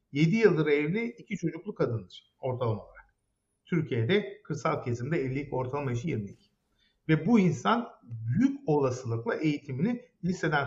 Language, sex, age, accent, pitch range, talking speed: Turkish, male, 50-69, native, 125-185 Hz, 125 wpm